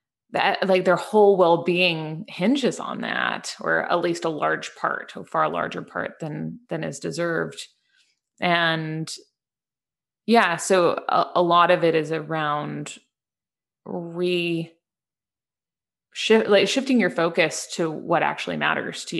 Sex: female